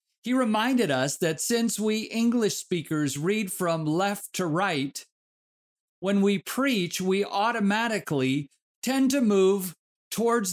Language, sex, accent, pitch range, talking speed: English, male, American, 160-220 Hz, 125 wpm